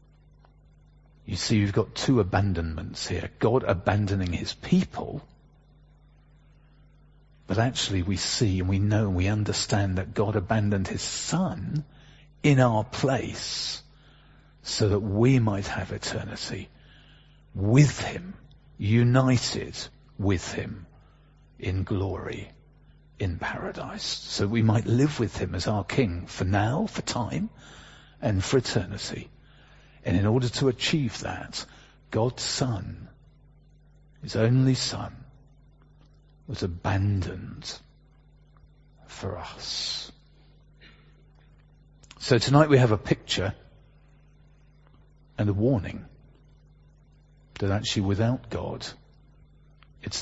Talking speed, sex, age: 105 wpm, male, 50-69